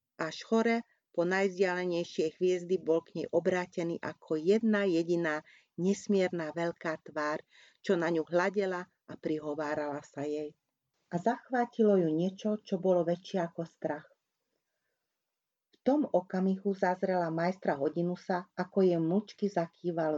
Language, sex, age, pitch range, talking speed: Hungarian, female, 40-59, 160-190 Hz, 120 wpm